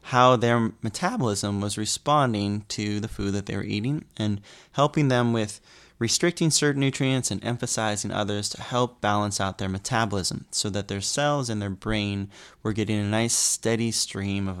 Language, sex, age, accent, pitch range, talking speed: English, male, 20-39, American, 100-115 Hz, 175 wpm